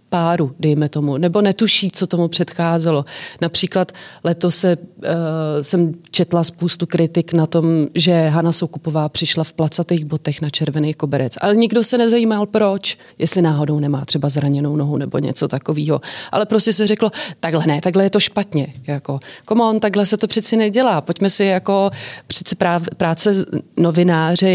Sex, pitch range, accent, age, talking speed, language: female, 155-180 Hz, native, 30-49, 160 wpm, Czech